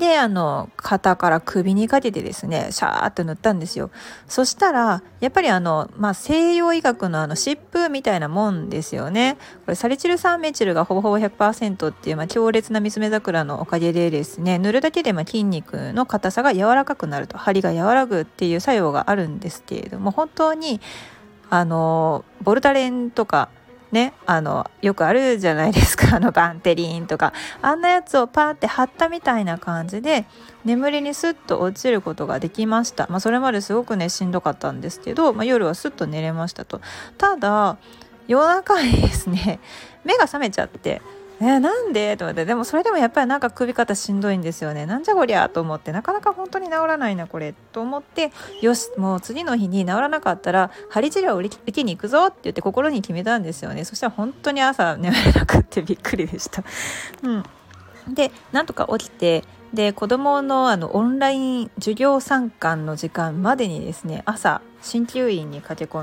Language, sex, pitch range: Japanese, female, 180-260 Hz